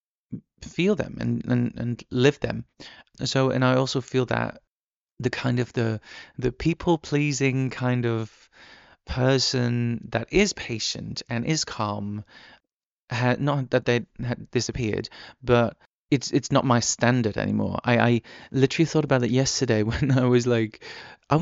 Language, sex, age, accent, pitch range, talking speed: English, male, 20-39, British, 115-145 Hz, 150 wpm